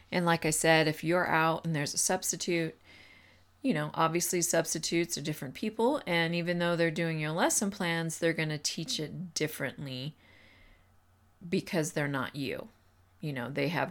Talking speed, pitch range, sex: 175 wpm, 130-175 Hz, female